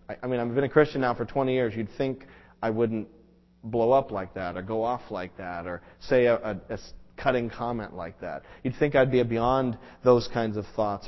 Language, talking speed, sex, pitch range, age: English, 220 wpm, male, 100-130 Hz, 40-59